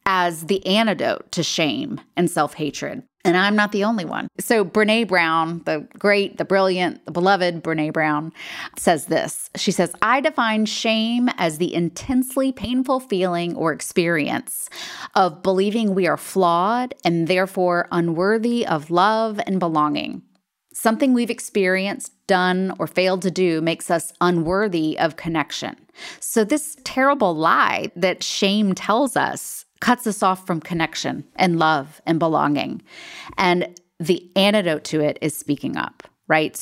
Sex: female